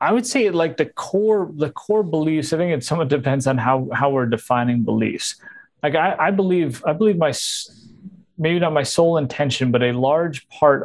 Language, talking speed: English, 205 wpm